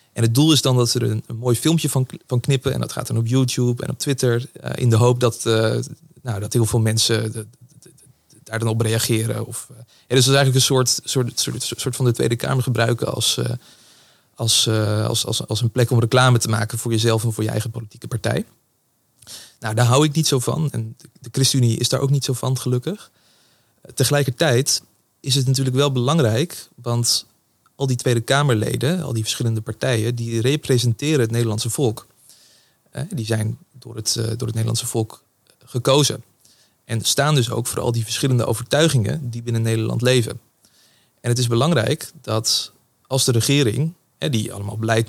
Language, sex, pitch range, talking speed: Dutch, male, 115-135 Hz, 200 wpm